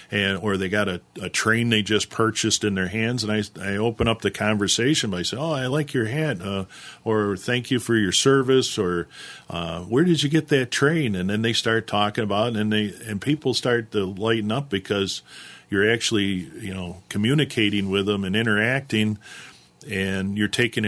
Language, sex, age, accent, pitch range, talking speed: English, male, 40-59, American, 100-120 Hz, 200 wpm